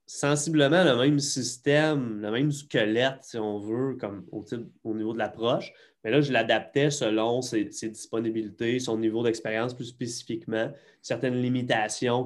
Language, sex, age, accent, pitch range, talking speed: French, male, 20-39, Canadian, 105-145 Hz, 145 wpm